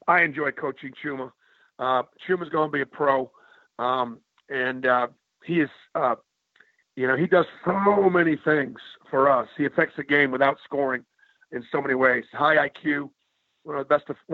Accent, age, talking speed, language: American, 50-69, 180 wpm, English